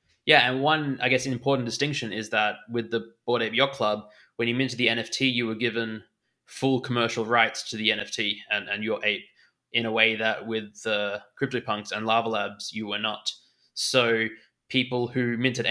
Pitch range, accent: 110-130 Hz, Australian